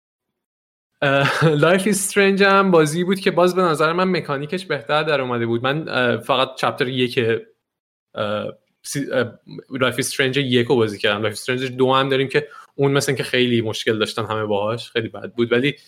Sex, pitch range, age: male, 130-165 Hz, 20-39